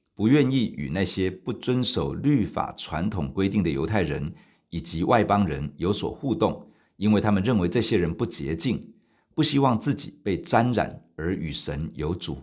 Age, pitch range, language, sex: 50-69, 85-115 Hz, Chinese, male